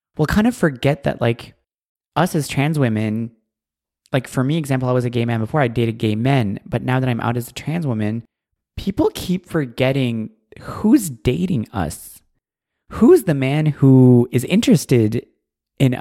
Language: English